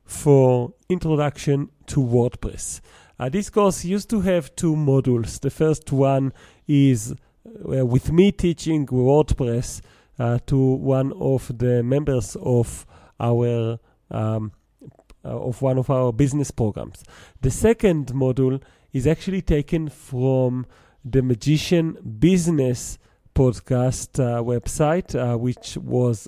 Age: 40-59